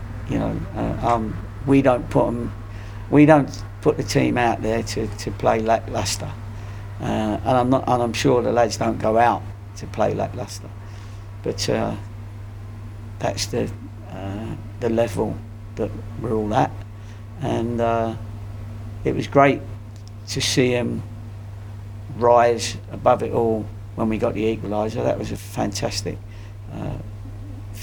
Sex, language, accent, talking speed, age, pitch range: male, English, British, 145 wpm, 50-69, 100-115 Hz